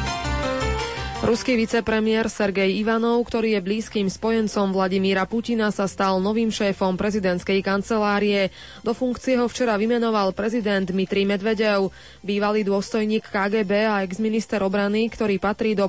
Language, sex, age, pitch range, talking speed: Slovak, female, 20-39, 195-230 Hz, 125 wpm